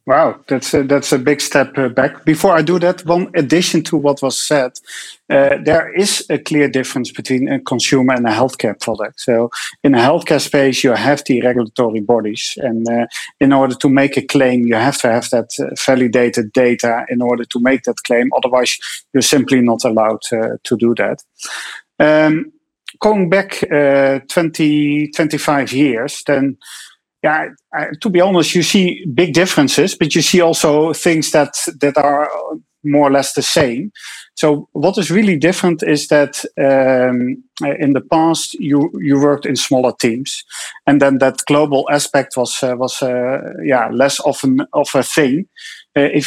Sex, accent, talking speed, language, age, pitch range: male, Dutch, 170 wpm, English, 40-59, 130-160 Hz